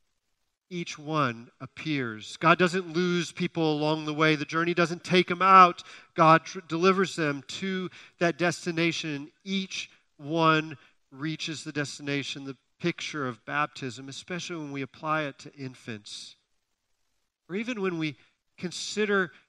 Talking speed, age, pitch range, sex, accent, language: 135 wpm, 40-59, 115-160 Hz, male, American, English